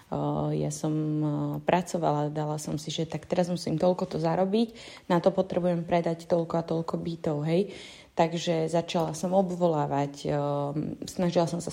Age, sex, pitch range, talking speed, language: 20-39, female, 150-180 Hz, 165 wpm, Slovak